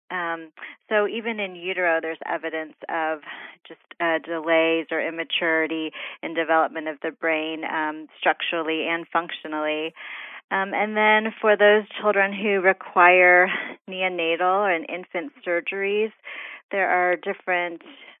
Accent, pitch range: American, 160-180 Hz